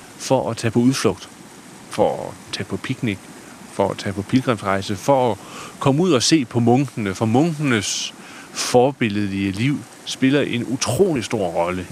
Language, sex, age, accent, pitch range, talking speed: Danish, male, 40-59, native, 100-125 Hz, 160 wpm